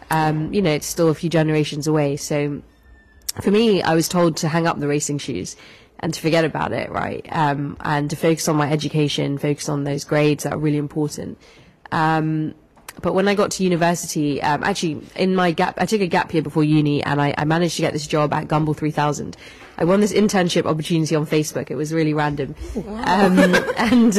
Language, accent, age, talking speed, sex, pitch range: English, British, 20-39, 210 wpm, female, 150-170 Hz